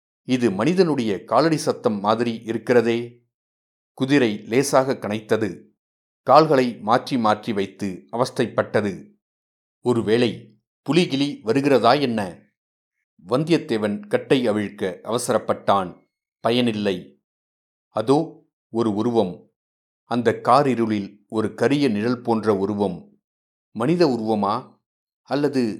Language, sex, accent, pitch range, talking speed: Tamil, male, native, 105-130 Hz, 85 wpm